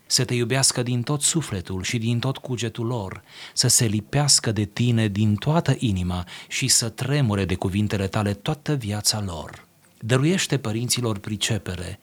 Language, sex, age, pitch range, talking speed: Romanian, male, 30-49, 100-125 Hz, 155 wpm